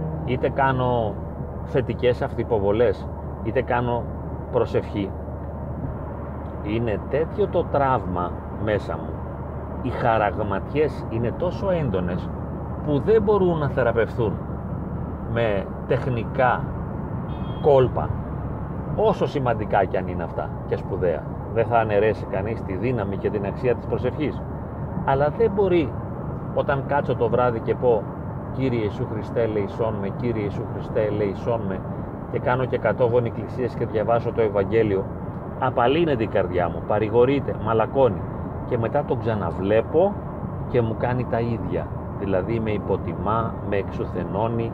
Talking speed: 125 wpm